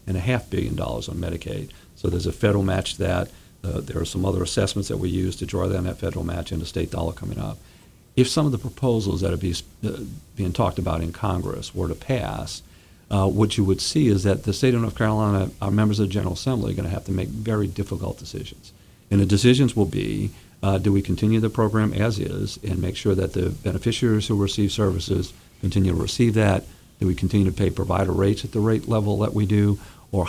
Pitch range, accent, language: 95-110 Hz, American, English